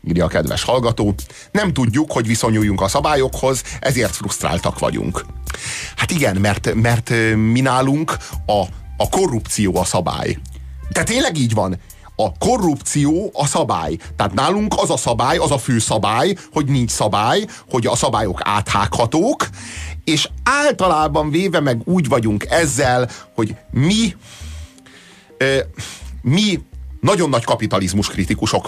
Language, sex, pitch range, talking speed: Hungarian, male, 110-155 Hz, 130 wpm